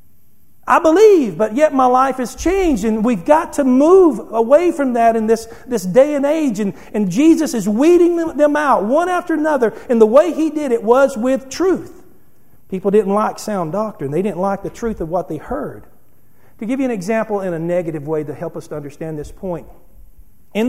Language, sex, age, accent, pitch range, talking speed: English, male, 50-69, American, 215-320 Hz, 210 wpm